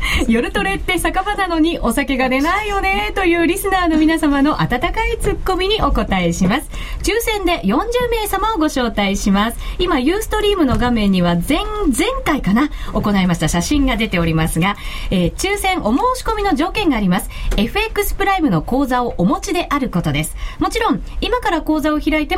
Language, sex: Japanese, female